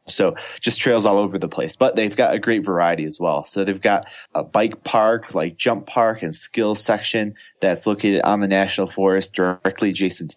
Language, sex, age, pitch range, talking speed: English, male, 20-39, 90-105 Hz, 210 wpm